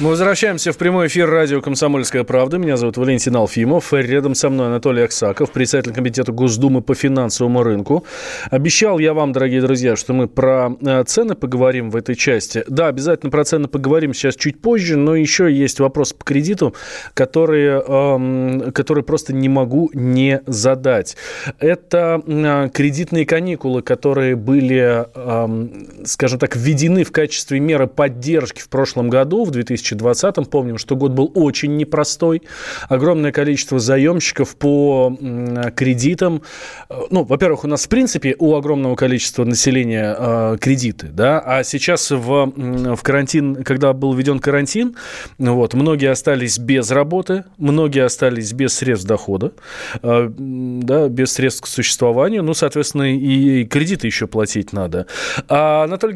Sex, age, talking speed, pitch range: male, 20-39, 140 wpm, 130-155 Hz